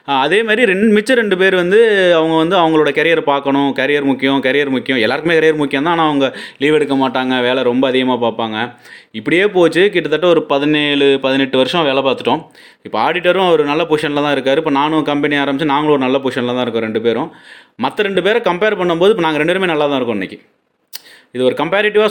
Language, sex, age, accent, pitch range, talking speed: Tamil, male, 30-49, native, 140-175 Hz, 195 wpm